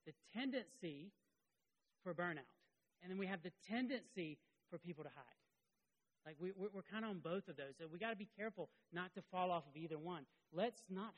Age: 40-59